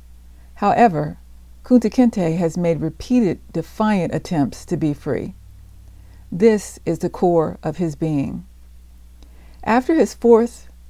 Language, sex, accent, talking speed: English, female, American, 110 wpm